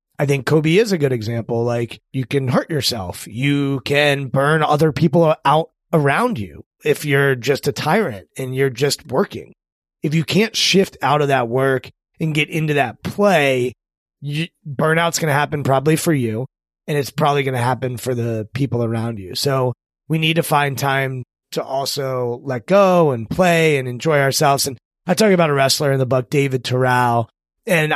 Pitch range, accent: 125-150 Hz, American